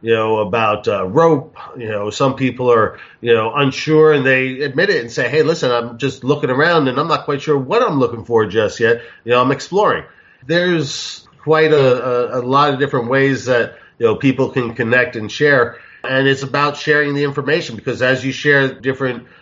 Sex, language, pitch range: male, English, 115-140 Hz